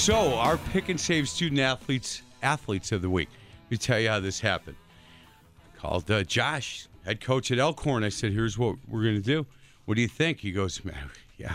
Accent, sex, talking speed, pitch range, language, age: American, male, 215 wpm, 100-135 Hz, English, 50-69